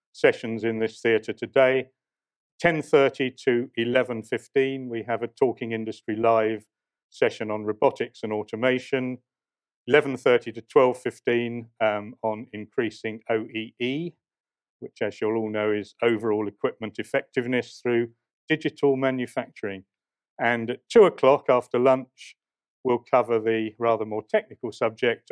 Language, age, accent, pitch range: English, 50-69, British, 110-135 Hz